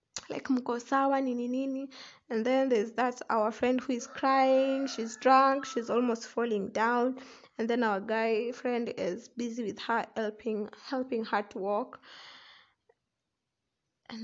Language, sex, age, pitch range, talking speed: English, female, 20-39, 220-265 Hz, 145 wpm